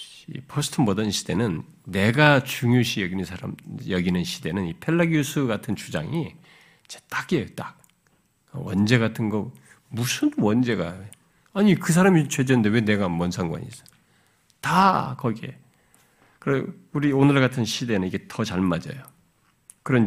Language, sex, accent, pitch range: Korean, male, native, 105-165 Hz